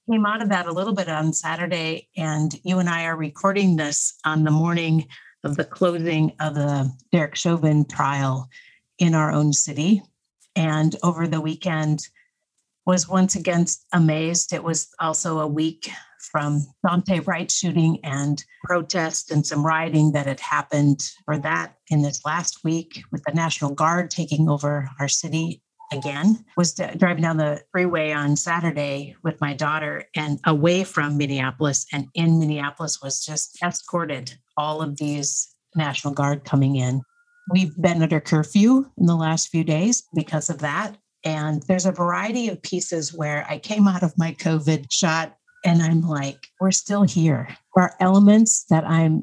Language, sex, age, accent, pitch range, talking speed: English, female, 50-69, American, 150-175 Hz, 165 wpm